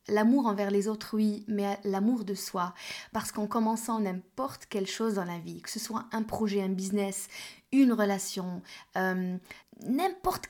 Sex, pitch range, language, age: female, 195-235 Hz, French, 20-39